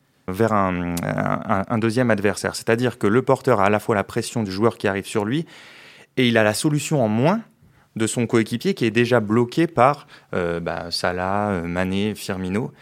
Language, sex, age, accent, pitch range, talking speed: French, male, 30-49, French, 105-135 Hz, 195 wpm